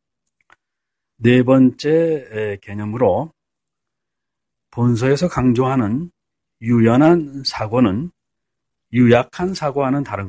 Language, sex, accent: Korean, male, native